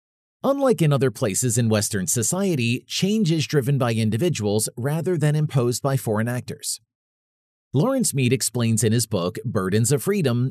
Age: 40-59